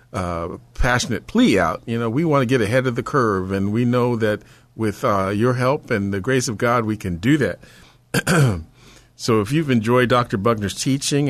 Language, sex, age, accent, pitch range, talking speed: English, male, 50-69, American, 110-130 Hz, 200 wpm